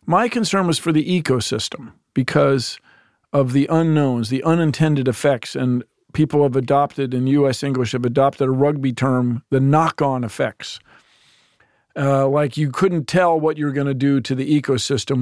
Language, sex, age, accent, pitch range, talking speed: English, male, 50-69, American, 130-160 Hz, 165 wpm